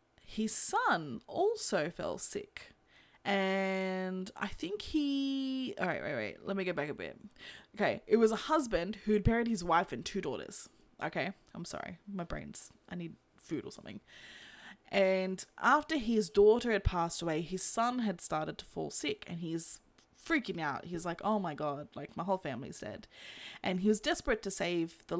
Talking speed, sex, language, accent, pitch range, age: 180 wpm, female, English, Australian, 170-235 Hz, 20-39